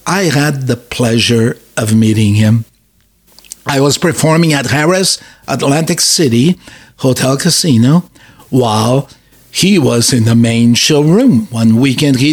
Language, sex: English, male